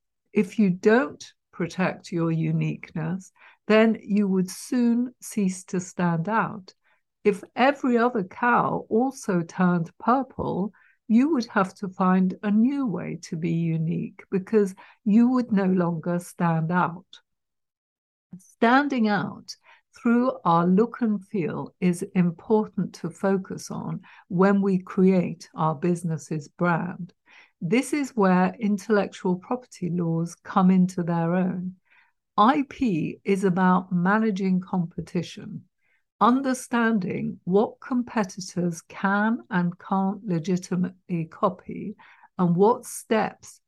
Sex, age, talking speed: female, 60-79, 115 wpm